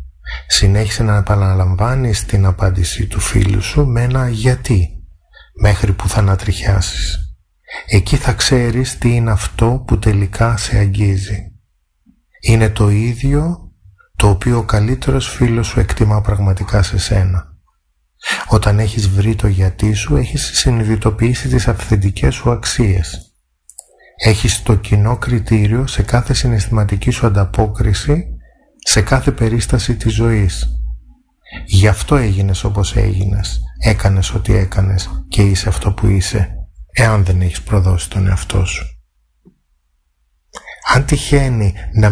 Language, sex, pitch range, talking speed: Greek, male, 95-115 Hz, 125 wpm